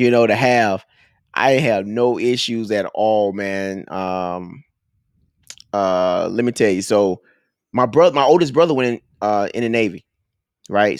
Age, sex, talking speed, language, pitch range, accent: 20-39, male, 165 wpm, English, 105-125 Hz, American